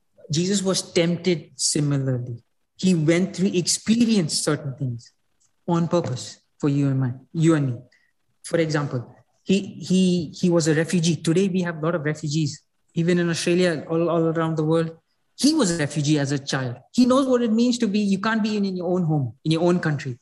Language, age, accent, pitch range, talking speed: English, 20-39, Indian, 150-180 Hz, 195 wpm